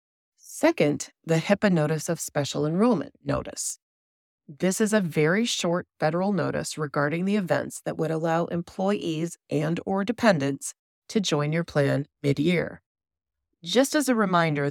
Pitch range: 145-190 Hz